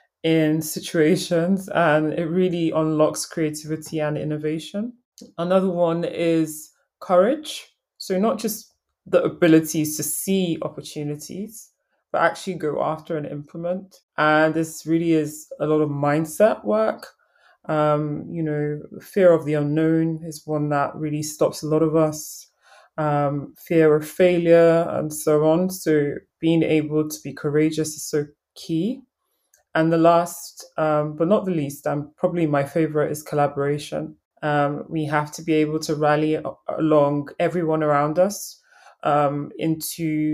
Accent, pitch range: British, 150-170 Hz